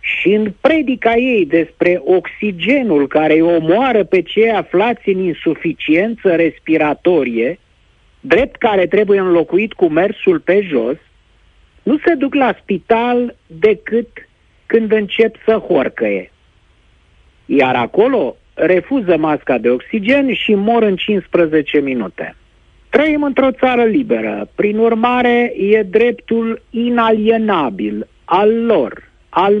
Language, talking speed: Romanian, 115 wpm